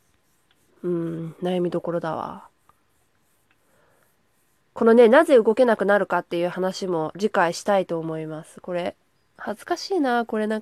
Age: 20-39